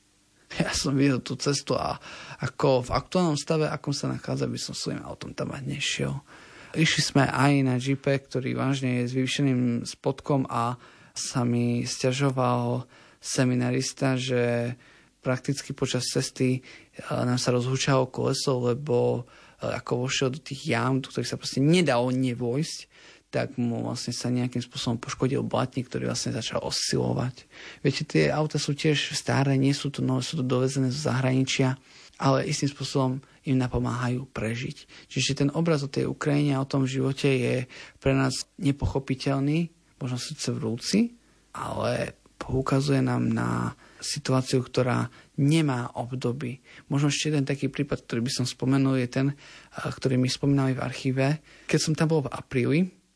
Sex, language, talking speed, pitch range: male, Slovak, 155 wpm, 125-140 Hz